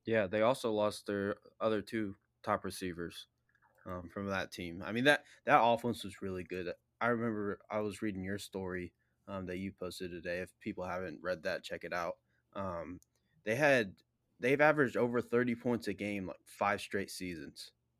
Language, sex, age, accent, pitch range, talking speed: English, male, 20-39, American, 95-110 Hz, 185 wpm